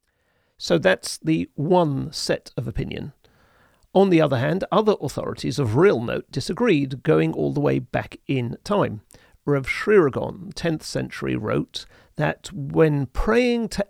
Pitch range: 135-185 Hz